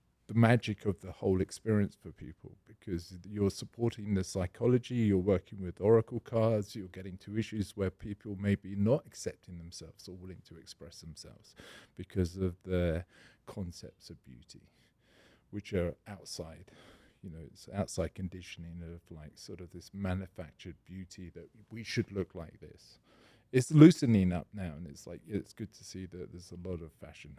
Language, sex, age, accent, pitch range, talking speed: English, male, 40-59, British, 90-110 Hz, 170 wpm